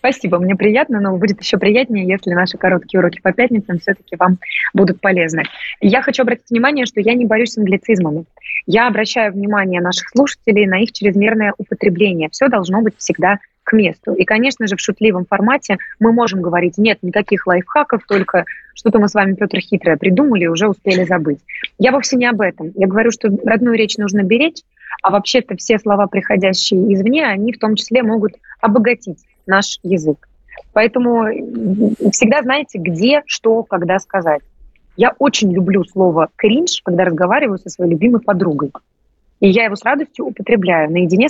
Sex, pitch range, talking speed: female, 185-225 Hz, 170 wpm